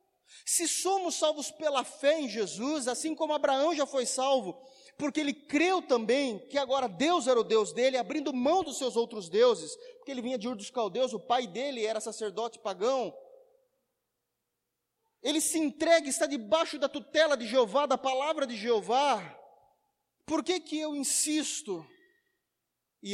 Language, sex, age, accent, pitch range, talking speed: Portuguese, male, 30-49, Brazilian, 230-300 Hz, 160 wpm